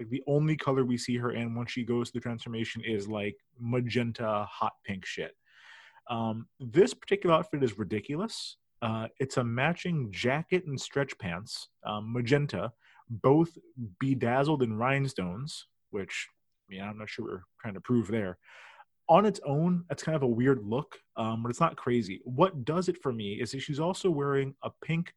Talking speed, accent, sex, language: 180 wpm, American, male, English